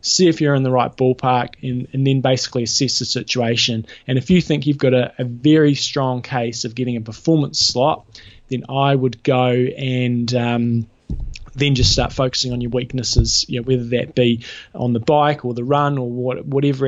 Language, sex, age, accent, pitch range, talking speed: English, male, 20-39, Australian, 120-135 Hz, 205 wpm